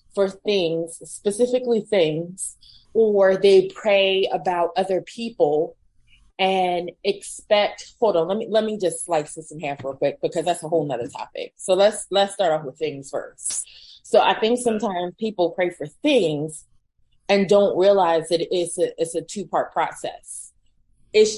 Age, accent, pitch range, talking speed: 20-39, American, 165-205 Hz, 165 wpm